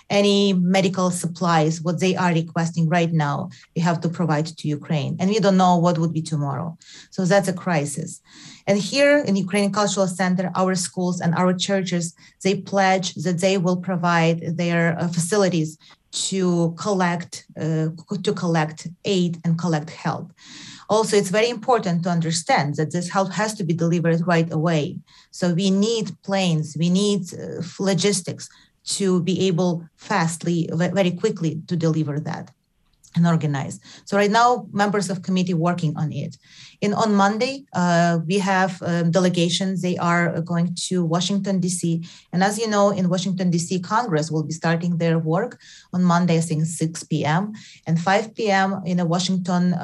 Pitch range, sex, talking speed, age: 165-190 Hz, female, 165 wpm, 30-49